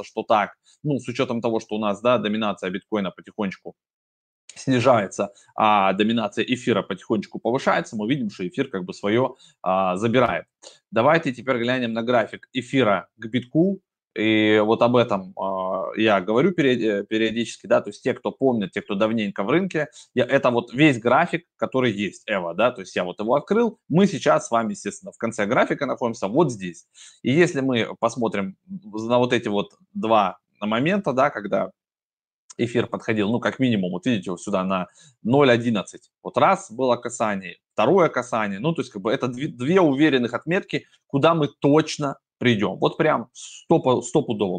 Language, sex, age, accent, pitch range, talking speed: Russian, male, 20-39, native, 110-145 Hz, 170 wpm